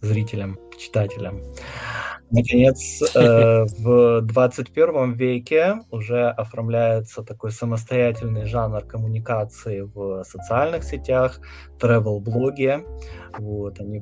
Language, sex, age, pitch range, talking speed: Russian, male, 20-39, 105-125 Hz, 85 wpm